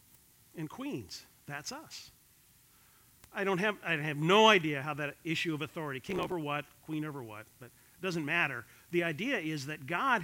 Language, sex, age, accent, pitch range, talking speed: English, male, 50-69, American, 135-185 Hz, 180 wpm